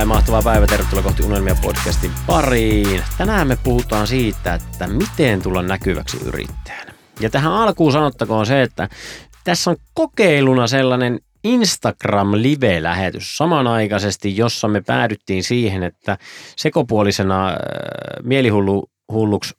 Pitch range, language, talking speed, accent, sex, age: 95-130 Hz, Finnish, 110 wpm, native, male, 30-49